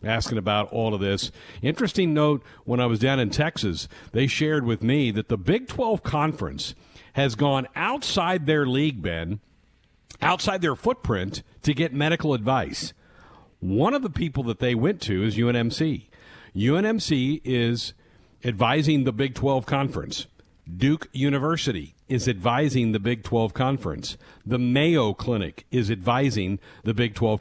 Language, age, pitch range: English, 50-69, 110-150 Hz